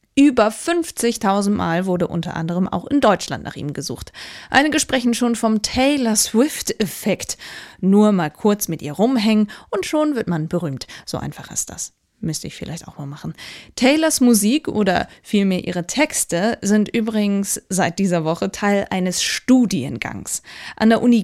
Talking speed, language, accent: 160 wpm, German, German